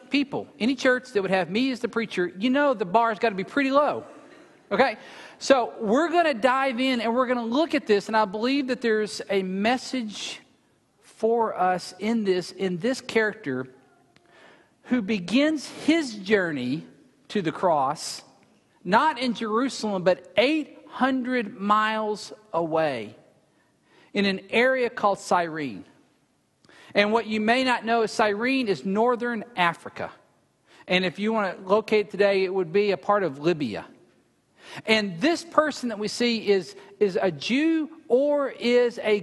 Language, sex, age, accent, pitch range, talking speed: English, male, 50-69, American, 200-250 Hz, 160 wpm